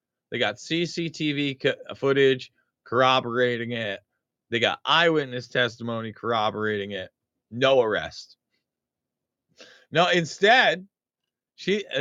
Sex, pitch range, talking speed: male, 115-155 Hz, 90 wpm